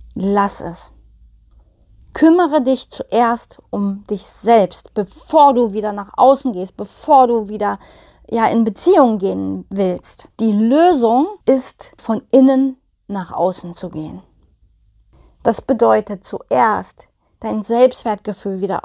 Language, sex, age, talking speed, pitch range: German, female, 30-49, 120 wpm, 205-265 Hz